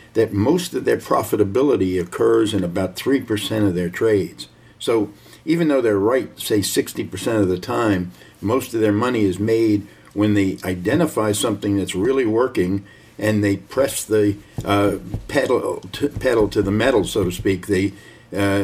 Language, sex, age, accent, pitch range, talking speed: English, male, 60-79, American, 95-110 Hz, 170 wpm